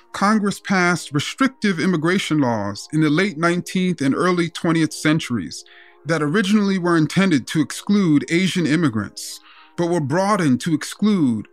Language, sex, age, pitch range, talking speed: English, male, 30-49, 140-190 Hz, 135 wpm